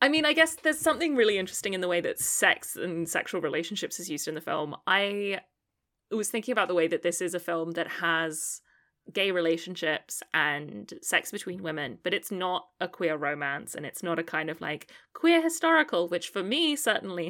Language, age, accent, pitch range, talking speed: English, 20-39, British, 170-215 Hz, 205 wpm